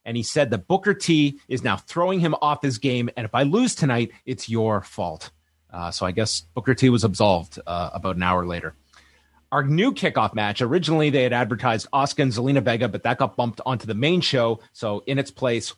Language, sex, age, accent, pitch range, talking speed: English, male, 30-49, American, 110-140 Hz, 220 wpm